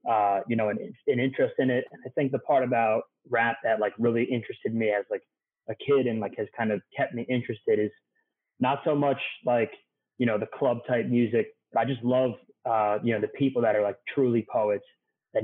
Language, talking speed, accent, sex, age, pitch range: English, 220 wpm, American, male, 30-49, 105-120 Hz